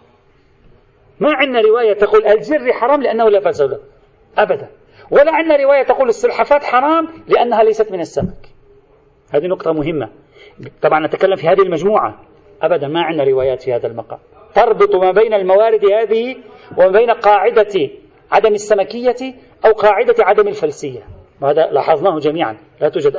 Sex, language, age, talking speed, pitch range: male, Arabic, 40-59, 140 wpm, 210-315 Hz